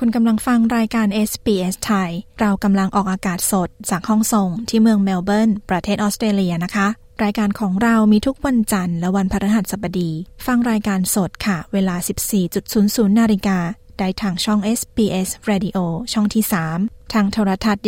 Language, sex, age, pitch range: Thai, female, 20-39, 190-220 Hz